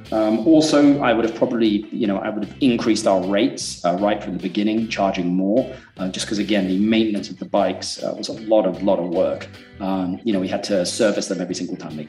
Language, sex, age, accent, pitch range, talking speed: English, male, 40-59, British, 95-120 Hz, 250 wpm